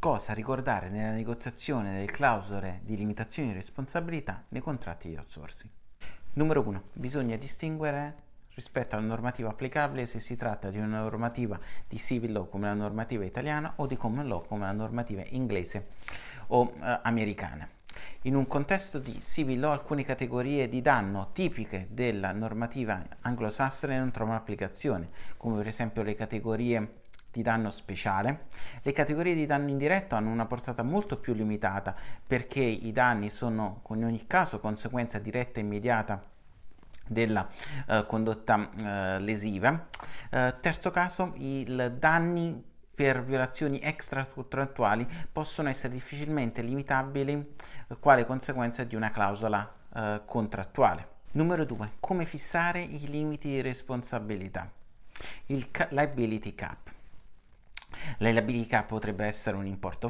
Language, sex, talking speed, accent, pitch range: Italian, male, 135 wpm, native, 105-140 Hz